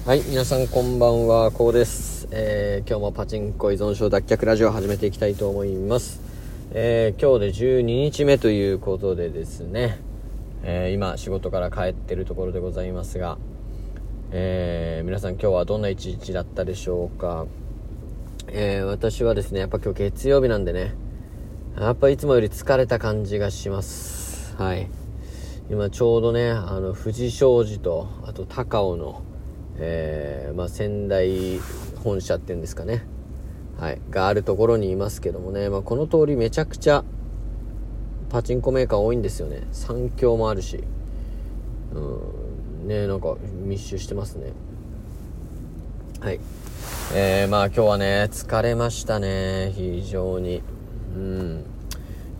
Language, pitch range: Japanese, 90-110 Hz